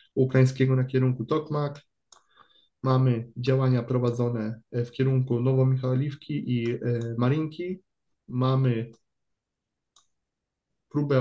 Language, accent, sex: Polish, native, male